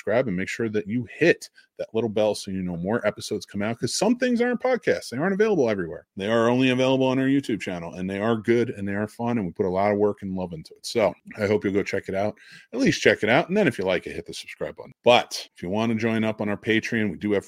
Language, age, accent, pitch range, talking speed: English, 30-49, American, 105-145 Hz, 300 wpm